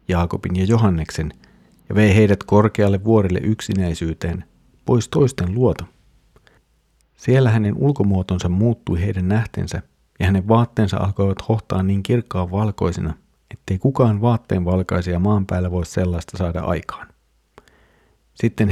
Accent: native